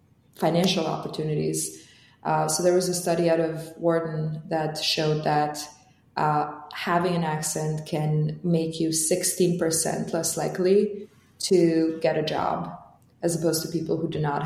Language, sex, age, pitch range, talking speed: English, female, 20-39, 155-180 Hz, 145 wpm